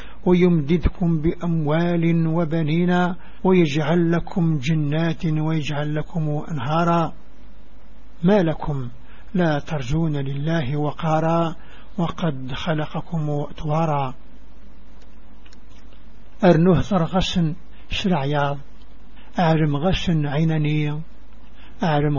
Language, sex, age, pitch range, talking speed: English, male, 60-79, 150-180 Hz, 70 wpm